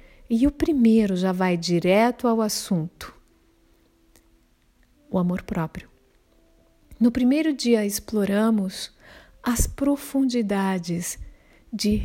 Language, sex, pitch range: Portuguese, female, 185-240 Hz